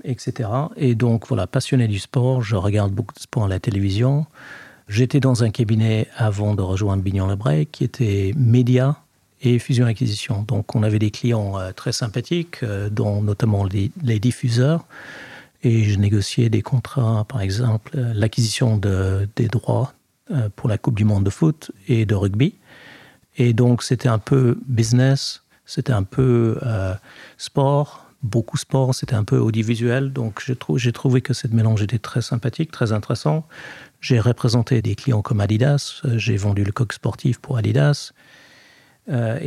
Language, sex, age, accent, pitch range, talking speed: French, male, 50-69, French, 105-130 Hz, 170 wpm